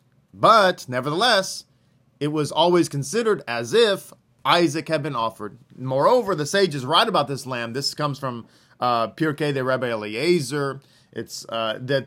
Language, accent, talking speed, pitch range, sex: English, American, 150 wpm, 140-185 Hz, male